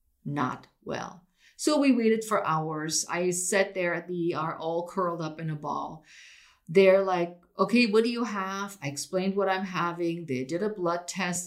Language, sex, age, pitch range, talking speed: English, female, 50-69, 165-220 Hz, 190 wpm